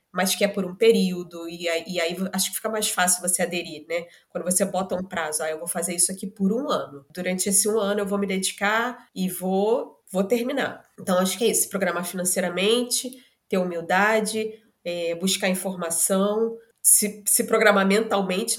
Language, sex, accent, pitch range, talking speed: Portuguese, female, Brazilian, 185-230 Hz, 195 wpm